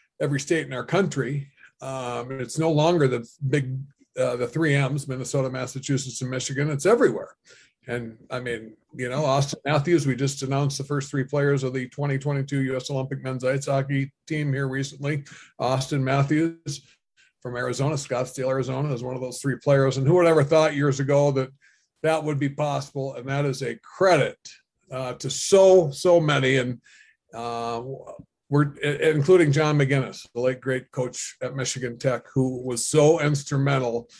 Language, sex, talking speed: English, male, 170 wpm